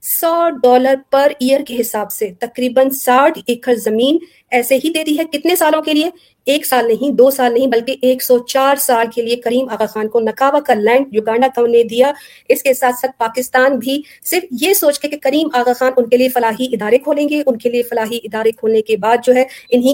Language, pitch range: Urdu, 240-275 Hz